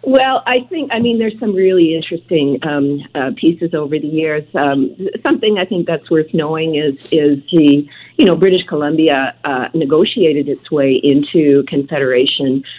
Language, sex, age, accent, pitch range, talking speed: English, female, 50-69, American, 130-165 Hz, 165 wpm